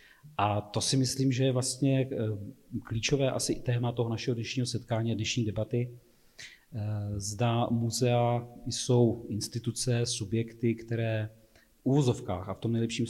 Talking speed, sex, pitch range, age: 140 wpm, male, 110-120 Hz, 40-59